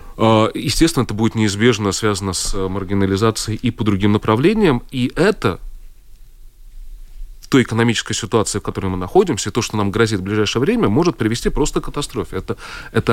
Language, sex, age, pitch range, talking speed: Russian, male, 30-49, 90-110 Hz, 160 wpm